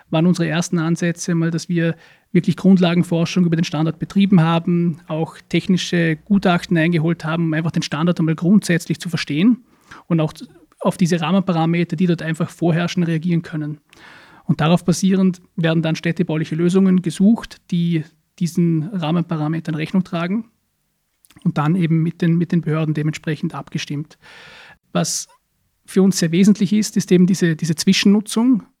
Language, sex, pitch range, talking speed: German, male, 165-185 Hz, 150 wpm